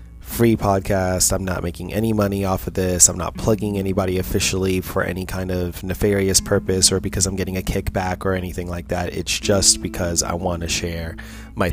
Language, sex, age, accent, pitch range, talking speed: English, male, 20-39, American, 85-100 Hz, 200 wpm